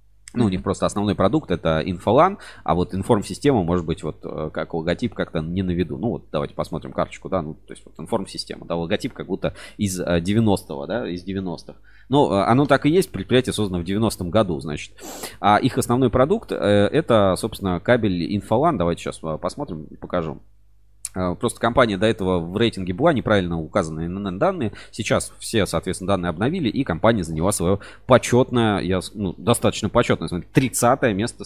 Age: 20-39